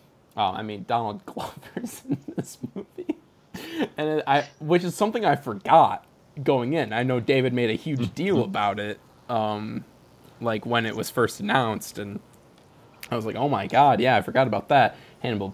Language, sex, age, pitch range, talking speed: English, male, 20-39, 110-140 Hz, 180 wpm